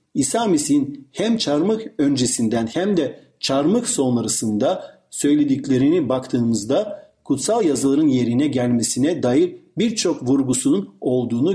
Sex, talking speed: male, 100 wpm